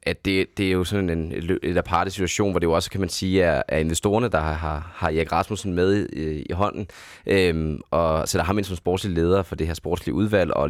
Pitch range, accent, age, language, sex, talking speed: 80-95 Hz, native, 20-39, Danish, male, 235 wpm